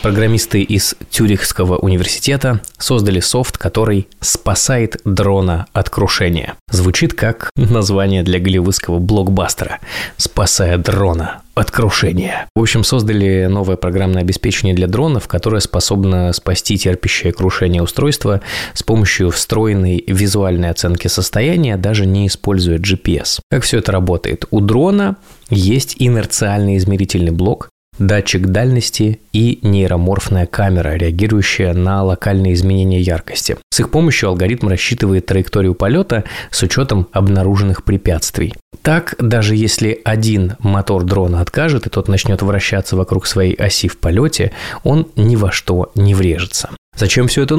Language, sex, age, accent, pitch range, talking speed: Russian, male, 20-39, native, 95-115 Hz, 125 wpm